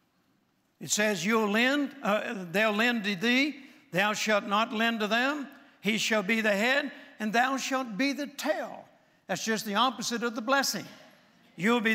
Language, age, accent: English, 60-79, American